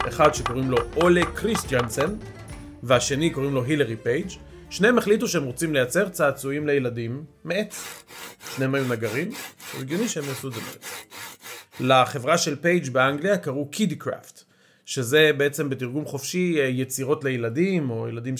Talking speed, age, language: 135 wpm, 40-59, Hebrew